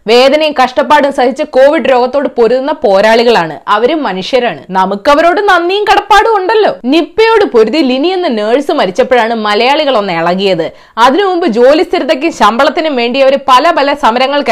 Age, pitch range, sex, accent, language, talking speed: 20-39, 230-335 Hz, female, native, Malayalam, 120 wpm